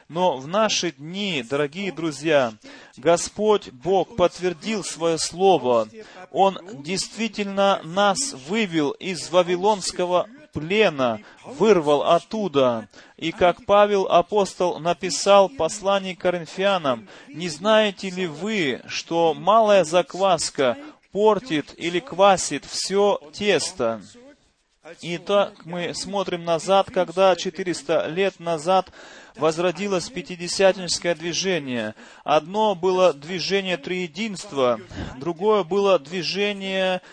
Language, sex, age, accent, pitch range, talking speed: Russian, male, 30-49, native, 160-200 Hz, 95 wpm